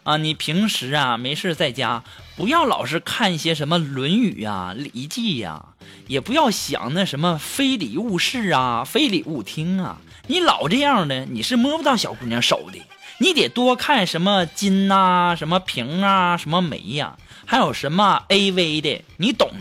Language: Chinese